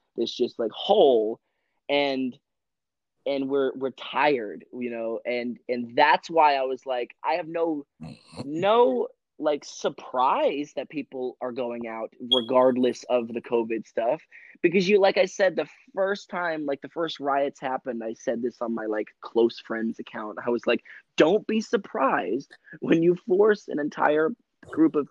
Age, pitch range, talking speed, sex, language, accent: 20-39, 125-190 Hz, 165 wpm, male, English, American